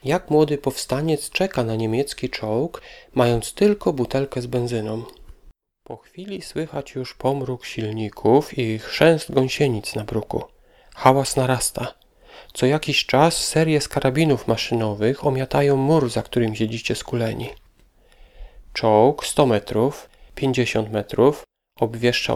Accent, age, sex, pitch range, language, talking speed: native, 40-59, male, 115-145 Hz, Polish, 120 wpm